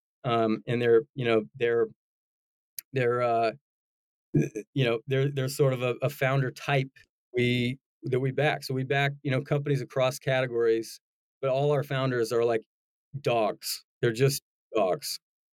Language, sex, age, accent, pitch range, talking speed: English, male, 40-59, American, 125-145 Hz, 155 wpm